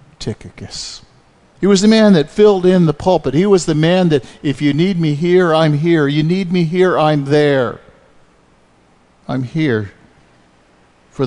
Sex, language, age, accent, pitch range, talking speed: male, English, 50-69, American, 90-125 Hz, 165 wpm